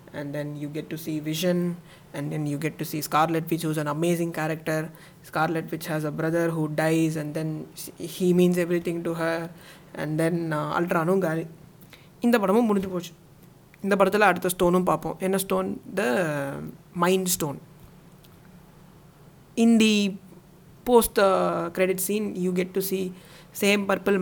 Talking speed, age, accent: 165 wpm, 20-39, native